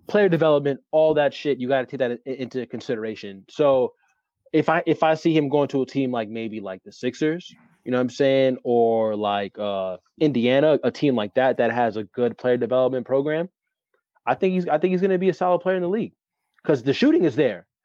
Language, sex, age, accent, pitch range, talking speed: English, male, 20-39, American, 120-160 Hz, 225 wpm